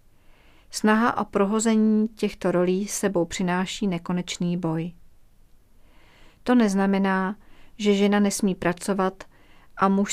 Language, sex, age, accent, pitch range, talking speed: Czech, female, 40-59, native, 185-210 Hz, 100 wpm